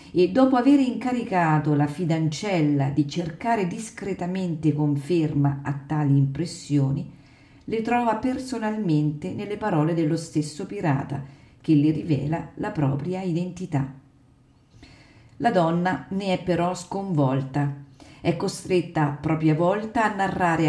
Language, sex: Italian, female